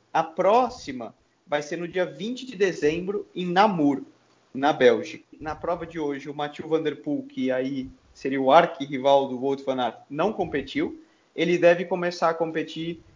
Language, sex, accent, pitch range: Portuguese, male, Brazilian, 145-180 Hz